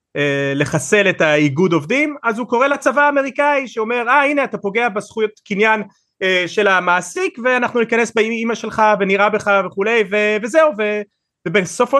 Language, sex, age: Hebrew, male, 30-49